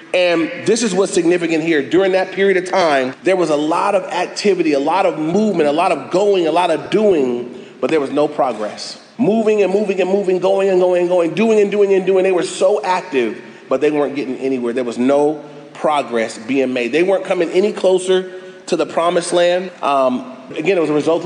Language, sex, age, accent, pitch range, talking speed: English, male, 30-49, American, 150-195 Hz, 225 wpm